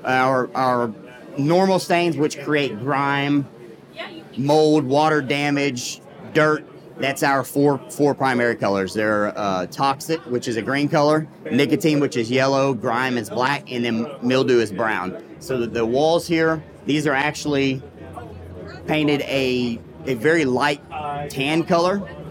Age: 40-59